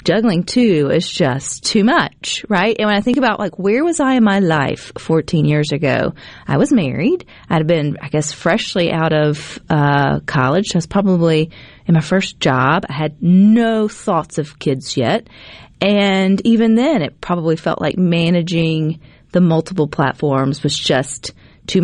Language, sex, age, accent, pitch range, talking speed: English, female, 40-59, American, 155-215 Hz, 175 wpm